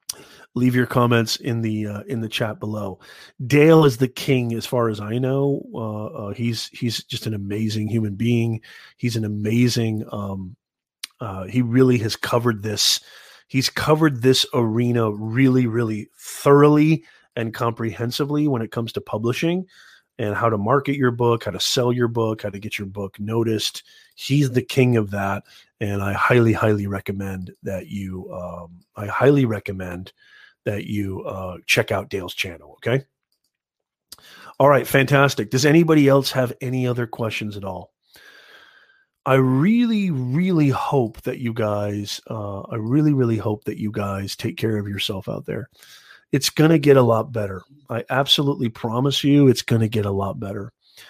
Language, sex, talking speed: English, male, 170 wpm